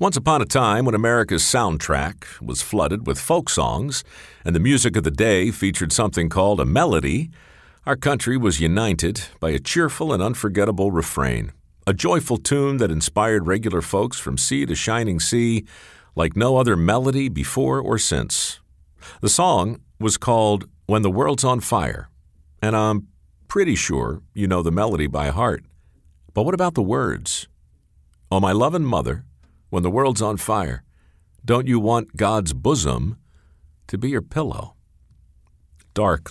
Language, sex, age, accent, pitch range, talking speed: English, male, 50-69, American, 75-110 Hz, 155 wpm